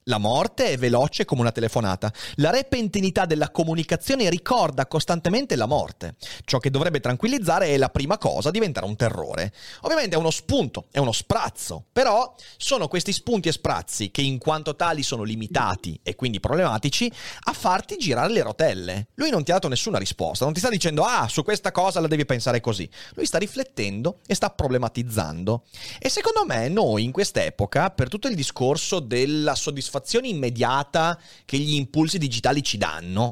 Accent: native